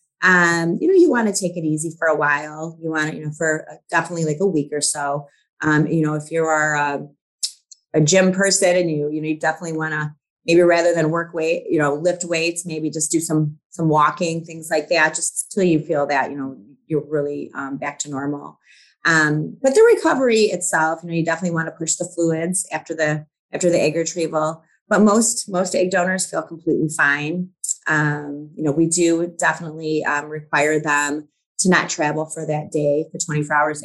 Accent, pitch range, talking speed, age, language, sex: American, 150-175 Hz, 215 wpm, 30-49, English, female